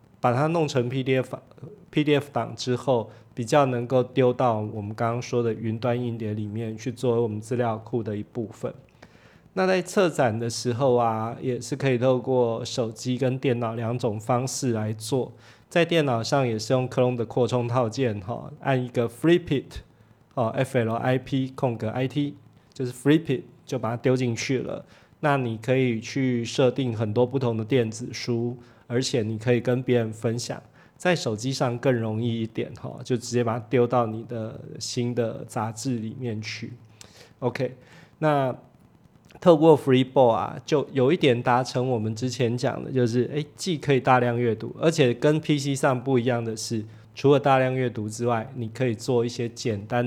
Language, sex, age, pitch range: Chinese, male, 20-39, 115-130 Hz